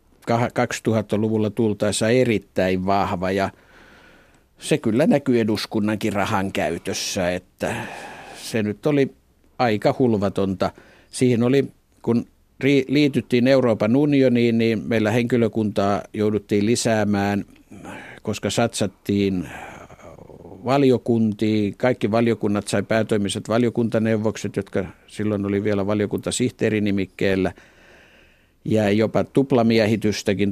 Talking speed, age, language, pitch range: 90 wpm, 50-69, Finnish, 100-115 Hz